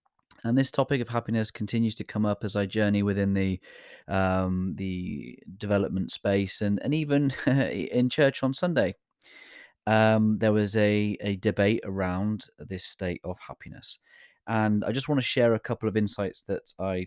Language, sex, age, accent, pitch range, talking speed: English, male, 20-39, British, 95-115 Hz, 170 wpm